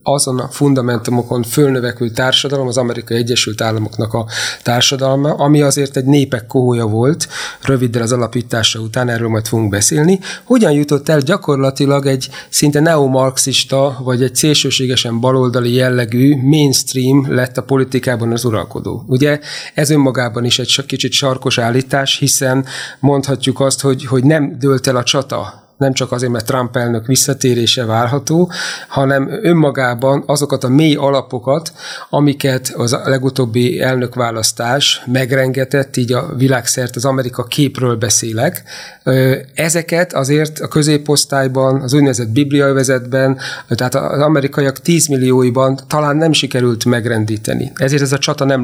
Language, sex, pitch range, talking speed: Hungarian, male, 125-145 Hz, 135 wpm